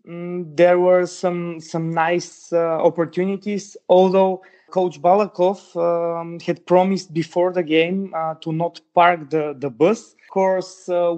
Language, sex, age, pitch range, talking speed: English, male, 20-39, 160-185 Hz, 145 wpm